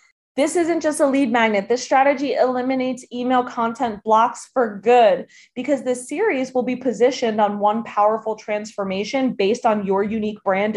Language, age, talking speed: English, 20-39, 160 wpm